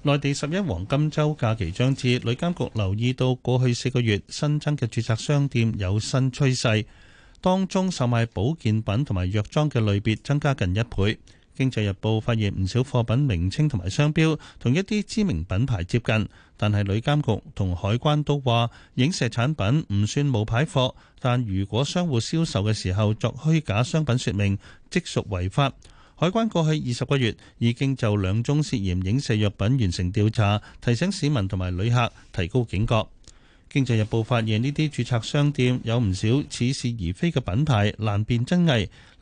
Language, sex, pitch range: Chinese, male, 105-145 Hz